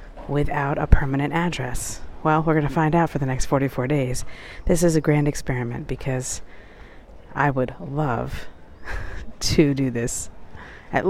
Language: English